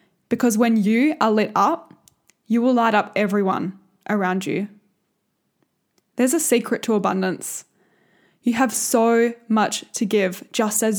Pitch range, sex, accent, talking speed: 205-240 Hz, female, Australian, 140 wpm